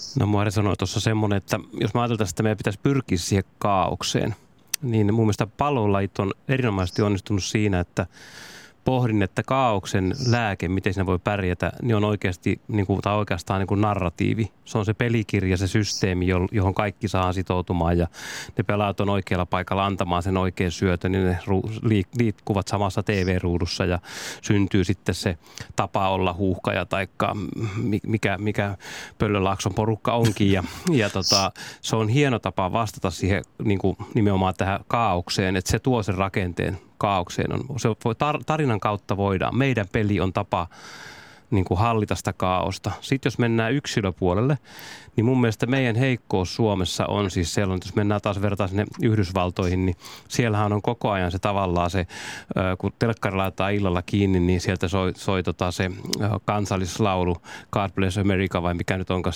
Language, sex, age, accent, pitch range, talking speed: Finnish, male, 30-49, native, 95-110 Hz, 155 wpm